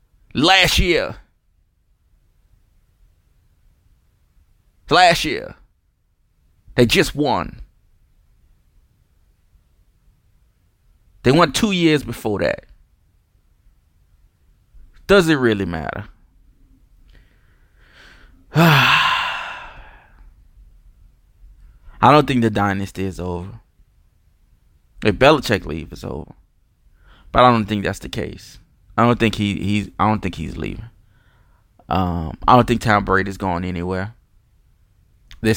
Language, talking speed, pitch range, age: English, 95 wpm, 90-110 Hz, 20-39